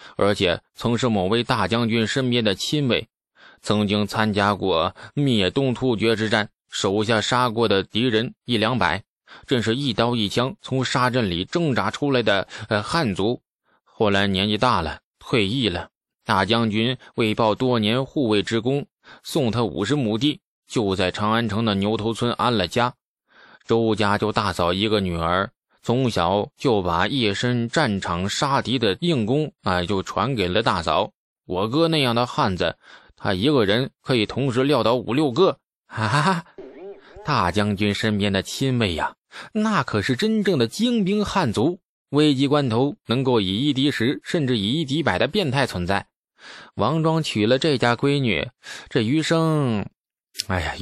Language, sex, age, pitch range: Chinese, male, 20-39, 105-135 Hz